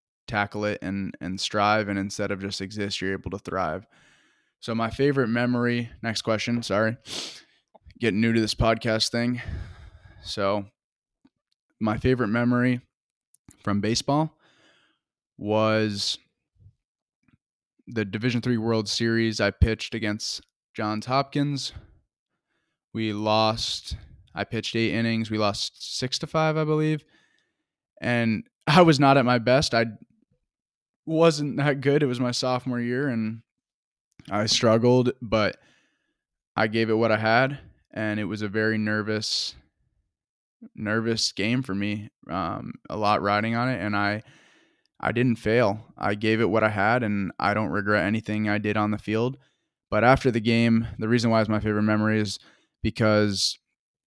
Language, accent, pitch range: English, American, 105-120 Hz